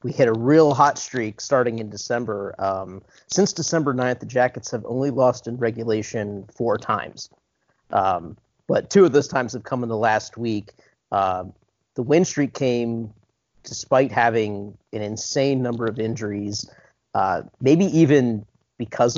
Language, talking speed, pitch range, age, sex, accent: English, 155 wpm, 110-130 Hz, 40-59, male, American